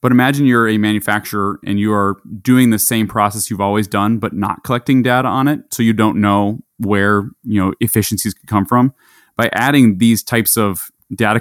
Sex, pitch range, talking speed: male, 100-115 Hz, 200 wpm